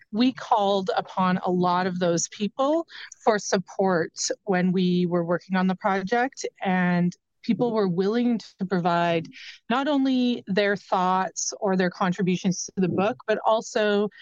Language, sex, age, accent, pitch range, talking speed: English, female, 30-49, American, 180-225 Hz, 150 wpm